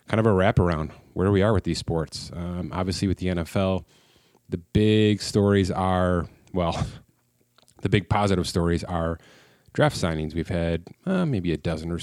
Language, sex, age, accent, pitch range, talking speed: English, male, 30-49, American, 85-100 Hz, 170 wpm